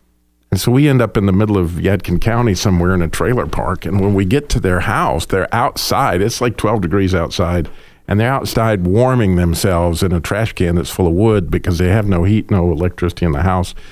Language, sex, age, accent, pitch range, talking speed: English, male, 50-69, American, 85-115 Hz, 230 wpm